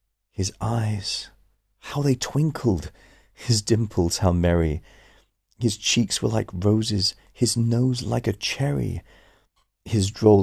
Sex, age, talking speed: male, 40-59, 120 wpm